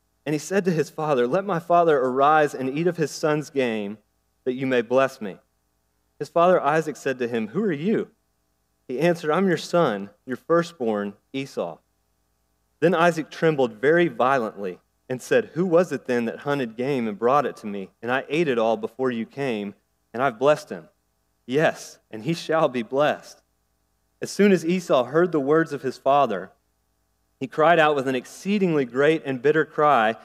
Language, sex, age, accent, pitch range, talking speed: English, male, 30-49, American, 115-175 Hz, 190 wpm